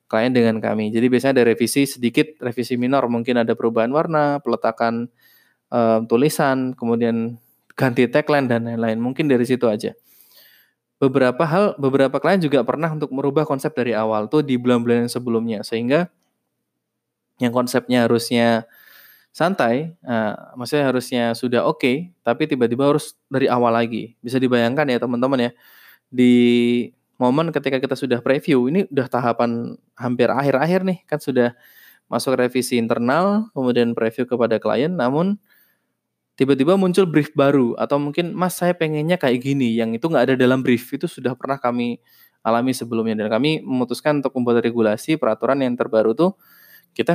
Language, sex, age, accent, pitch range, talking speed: Indonesian, male, 20-39, native, 115-140 Hz, 150 wpm